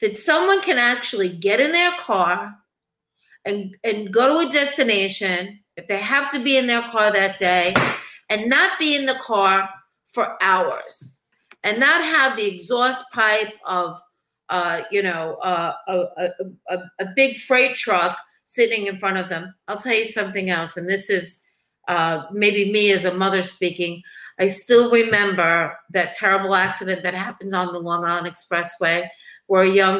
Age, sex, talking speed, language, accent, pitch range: 50-69, female, 170 wpm, English, American, 180-245 Hz